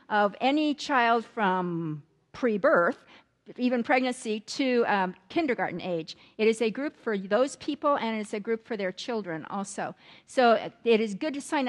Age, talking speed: 50-69, 170 wpm